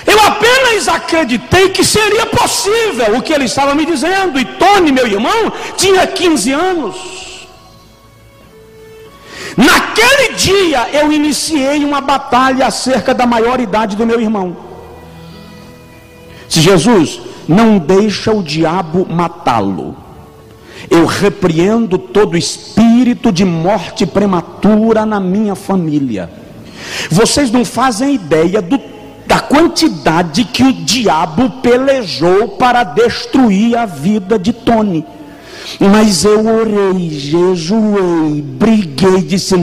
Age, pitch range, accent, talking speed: 50-69, 190-255 Hz, Brazilian, 110 wpm